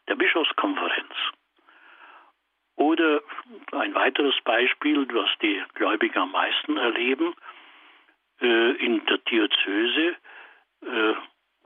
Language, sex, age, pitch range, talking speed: German, male, 60-79, 320-370 Hz, 85 wpm